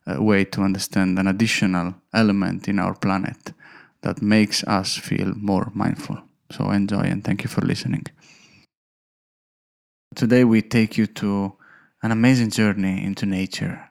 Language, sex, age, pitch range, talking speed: English, male, 20-39, 105-145 Hz, 140 wpm